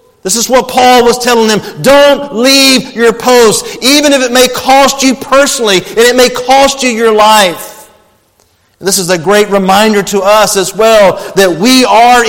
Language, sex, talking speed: English, male, 180 wpm